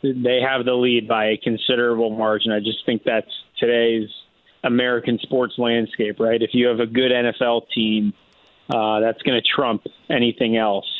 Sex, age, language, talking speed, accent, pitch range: male, 30-49, English, 170 wpm, American, 110-125 Hz